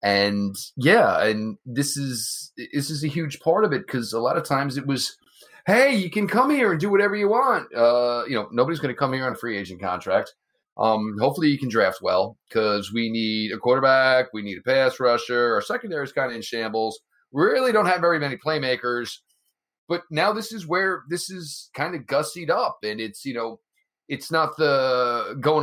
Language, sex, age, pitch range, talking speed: English, male, 30-49, 125-170 Hz, 215 wpm